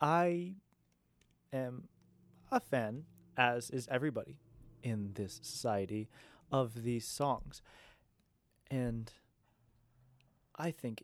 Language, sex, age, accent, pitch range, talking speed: English, male, 20-39, American, 115-130 Hz, 85 wpm